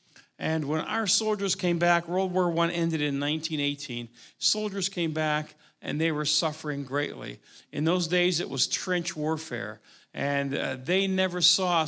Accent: American